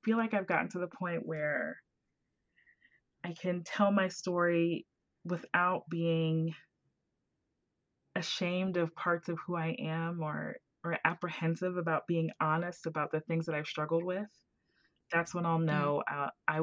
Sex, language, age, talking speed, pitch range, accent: female, English, 20-39, 150 wpm, 155-185 Hz, American